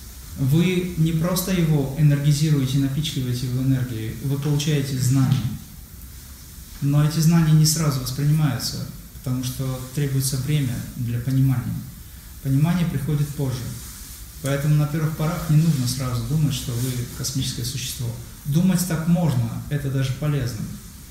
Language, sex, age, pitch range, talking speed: Russian, male, 20-39, 120-150 Hz, 125 wpm